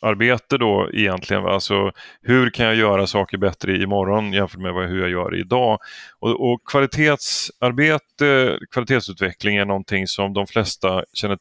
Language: English